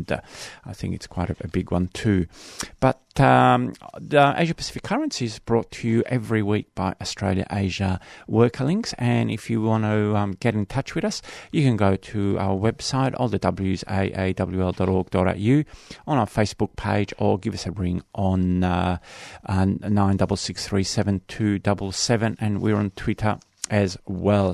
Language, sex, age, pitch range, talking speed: English, male, 40-59, 95-115 Hz, 155 wpm